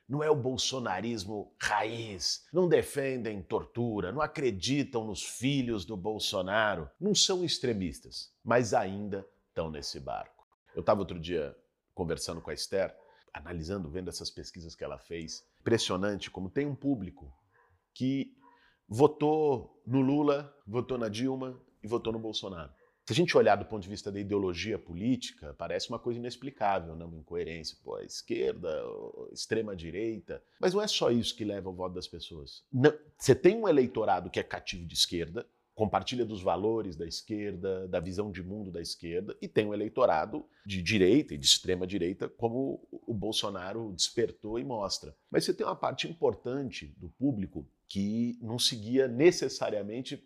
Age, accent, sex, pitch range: 40-59, Brazilian, male, 95-135 Hz